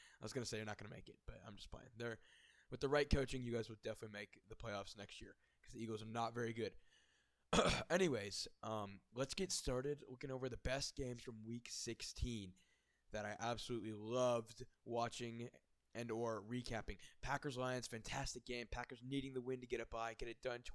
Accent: American